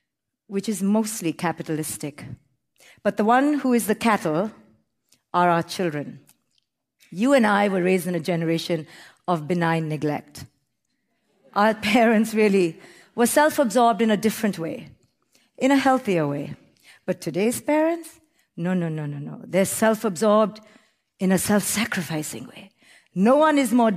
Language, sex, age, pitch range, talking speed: English, female, 50-69, 175-240 Hz, 140 wpm